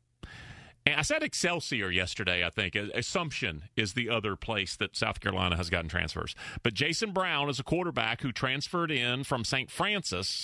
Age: 40-59